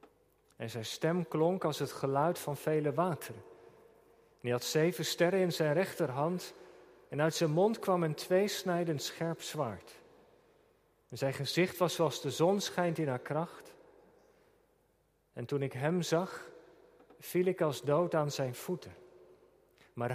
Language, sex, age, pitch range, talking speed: Dutch, male, 40-59, 145-205 Hz, 150 wpm